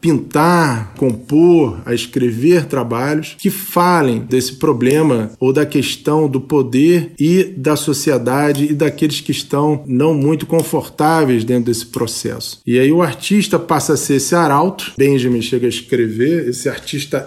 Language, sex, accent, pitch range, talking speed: Portuguese, male, Brazilian, 125-160 Hz, 145 wpm